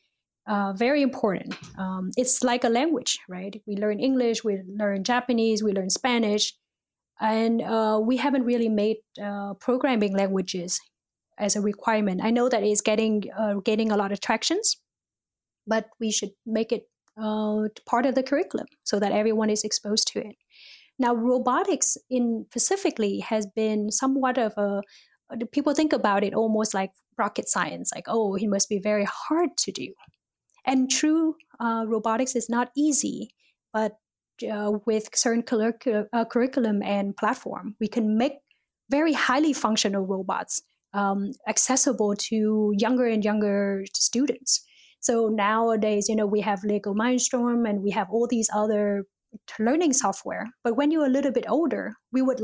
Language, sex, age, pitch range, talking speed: English, female, 20-39, 210-250 Hz, 160 wpm